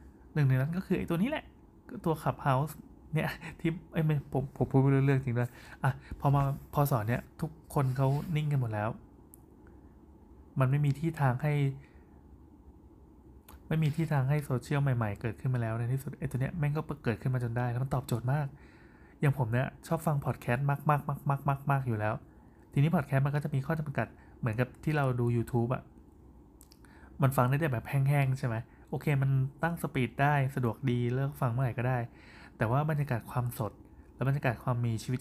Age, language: 20-39, Thai